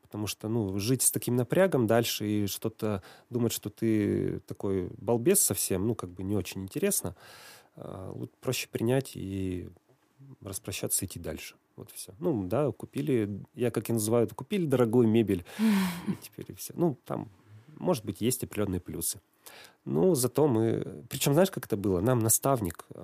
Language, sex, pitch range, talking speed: Russian, male, 95-125 Hz, 160 wpm